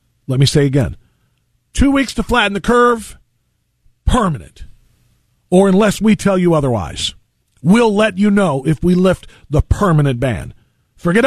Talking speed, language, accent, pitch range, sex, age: 150 wpm, English, American, 135-195 Hz, male, 40-59